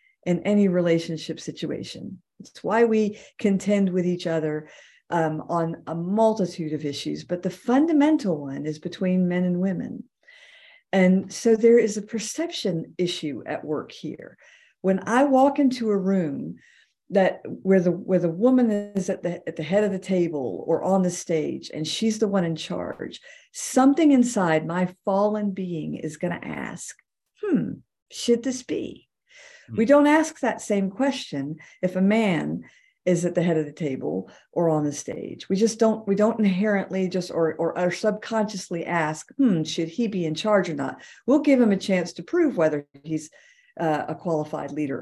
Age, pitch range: 50-69, 165-235 Hz